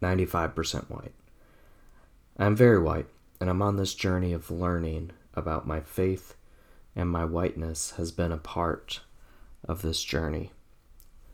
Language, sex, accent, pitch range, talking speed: English, male, American, 80-95 Hz, 130 wpm